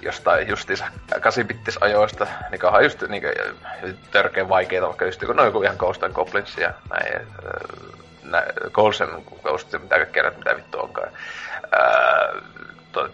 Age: 30-49